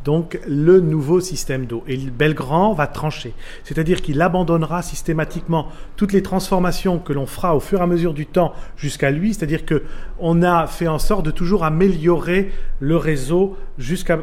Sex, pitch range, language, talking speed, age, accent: male, 135-180 Hz, French, 170 wpm, 40-59, French